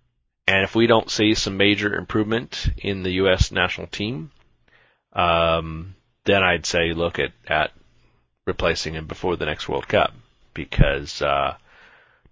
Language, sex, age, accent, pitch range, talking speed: English, male, 40-59, American, 95-150 Hz, 145 wpm